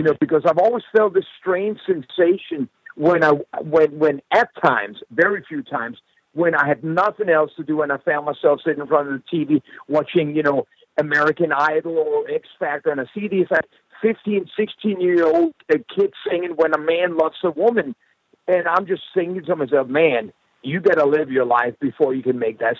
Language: English